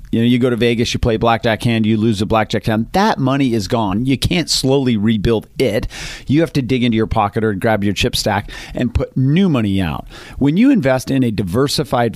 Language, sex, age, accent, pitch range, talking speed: English, male, 40-59, American, 110-130 Hz, 230 wpm